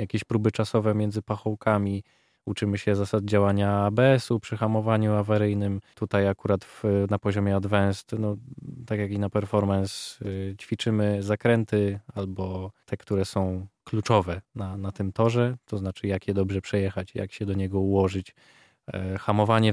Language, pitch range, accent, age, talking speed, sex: Polish, 100-110 Hz, native, 20-39, 140 wpm, male